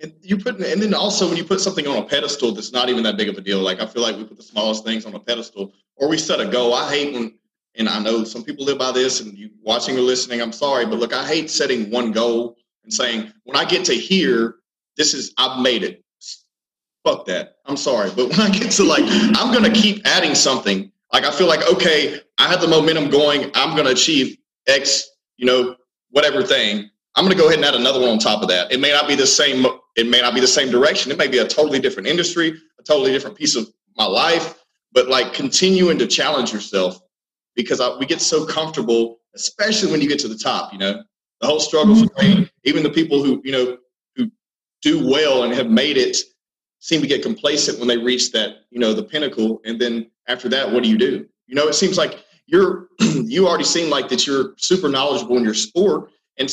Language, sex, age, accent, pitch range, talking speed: English, male, 30-49, American, 120-185 Hz, 240 wpm